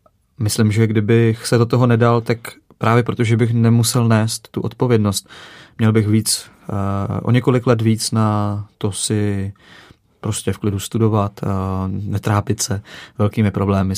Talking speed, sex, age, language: 140 wpm, male, 20-39, Czech